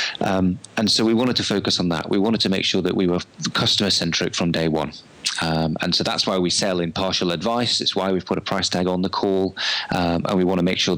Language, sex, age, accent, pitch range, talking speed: English, male, 30-49, British, 90-110 Hz, 260 wpm